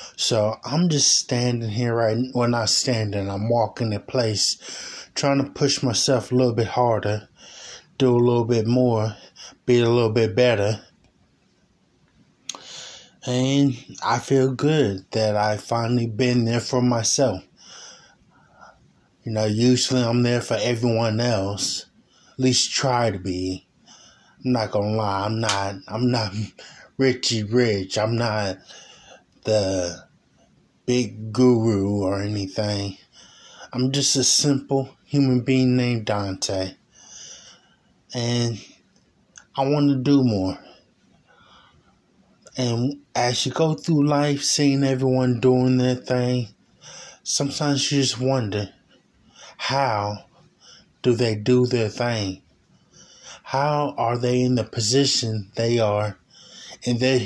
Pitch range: 105-130 Hz